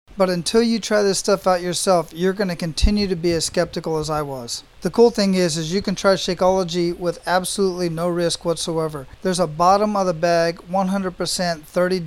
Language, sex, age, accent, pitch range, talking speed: English, male, 40-59, American, 165-190 Hz, 200 wpm